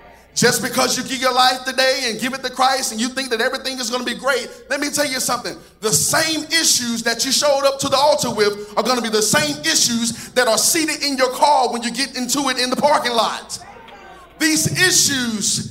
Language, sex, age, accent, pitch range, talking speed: English, male, 40-59, American, 220-275 Hz, 235 wpm